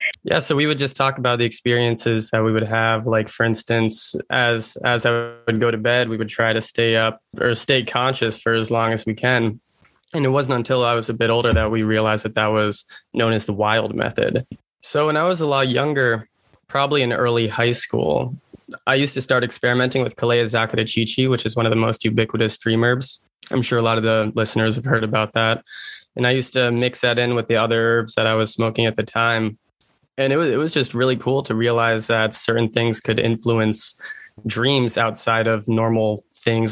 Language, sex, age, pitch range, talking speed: English, male, 20-39, 110-125 Hz, 220 wpm